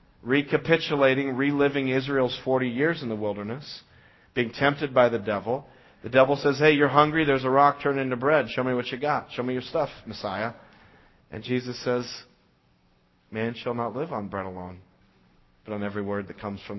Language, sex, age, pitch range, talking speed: English, male, 40-59, 110-140 Hz, 185 wpm